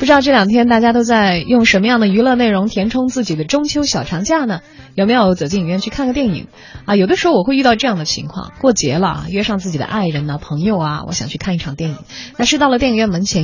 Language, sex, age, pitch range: Chinese, female, 20-39, 165-250 Hz